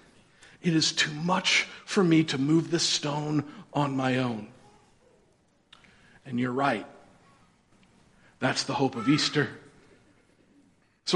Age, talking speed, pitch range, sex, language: 50-69, 120 wpm, 155-220 Hz, male, English